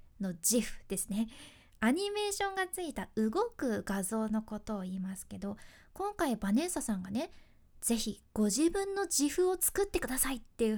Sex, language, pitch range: female, Japanese, 215-340 Hz